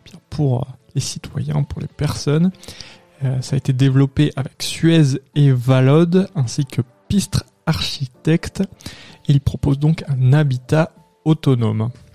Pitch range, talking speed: 125-155 Hz, 120 wpm